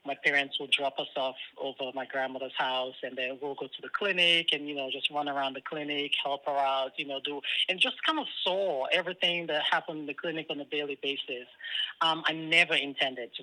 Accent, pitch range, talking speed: American, 130-150 Hz, 230 wpm